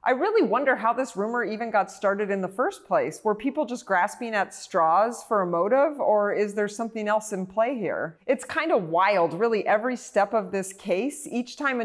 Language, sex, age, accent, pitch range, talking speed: English, female, 30-49, American, 190-235 Hz, 220 wpm